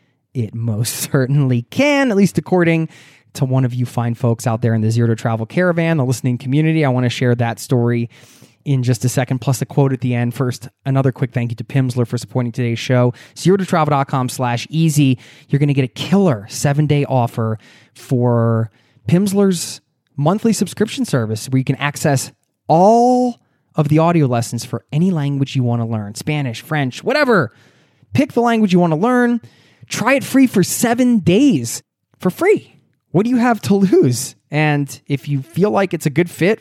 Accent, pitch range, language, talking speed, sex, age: American, 120-165 Hz, English, 190 wpm, male, 20-39